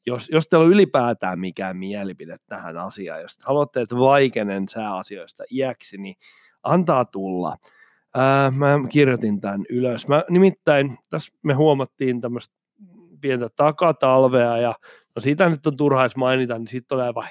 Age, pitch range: 30-49, 120-180 Hz